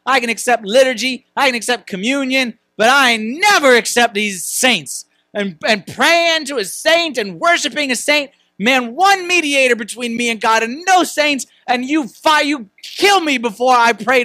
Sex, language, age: male, English, 30-49